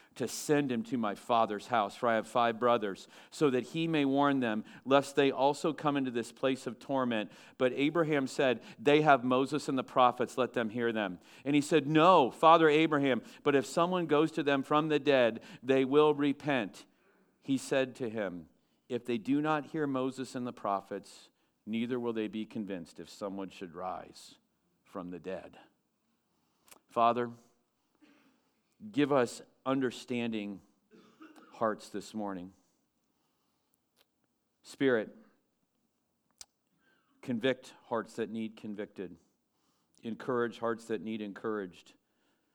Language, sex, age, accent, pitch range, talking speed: English, male, 50-69, American, 110-150 Hz, 140 wpm